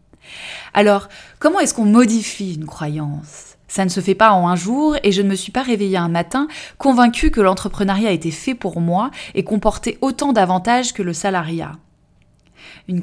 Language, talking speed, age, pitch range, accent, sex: French, 180 wpm, 20-39, 165-215 Hz, French, female